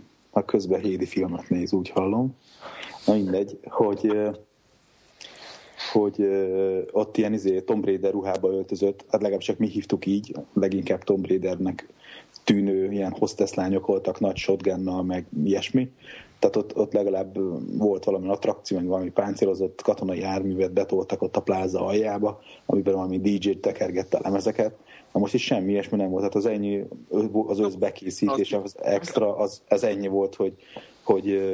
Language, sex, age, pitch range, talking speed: Hungarian, male, 30-49, 95-105 Hz, 150 wpm